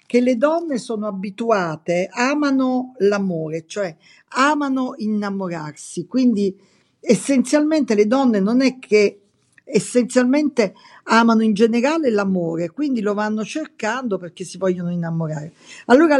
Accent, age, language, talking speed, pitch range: native, 50-69, Italian, 115 wpm, 190-255 Hz